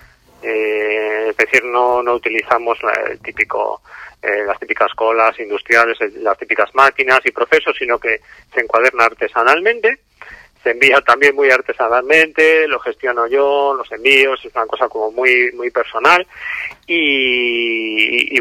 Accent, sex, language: Spanish, male, Spanish